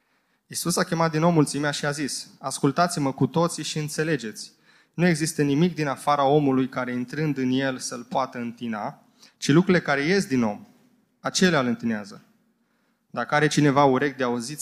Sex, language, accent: male, Romanian, native